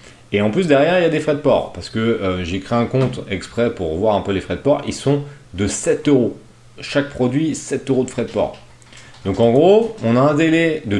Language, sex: French, male